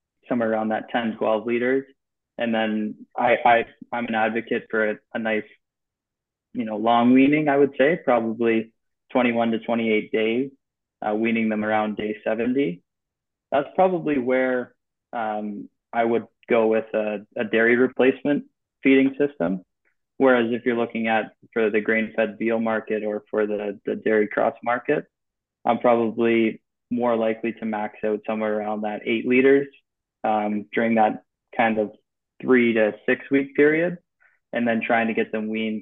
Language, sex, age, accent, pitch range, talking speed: English, male, 20-39, American, 105-120 Hz, 155 wpm